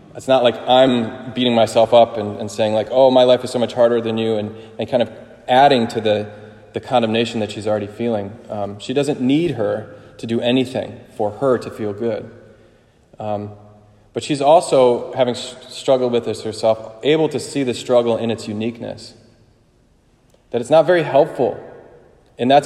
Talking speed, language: 185 wpm, English